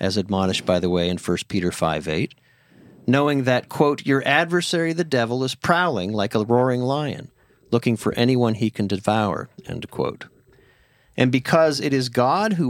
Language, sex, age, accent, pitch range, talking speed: English, male, 40-59, American, 105-140 Hz, 170 wpm